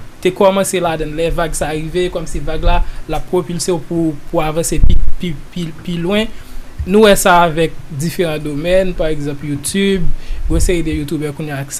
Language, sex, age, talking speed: French, male, 20-39, 170 wpm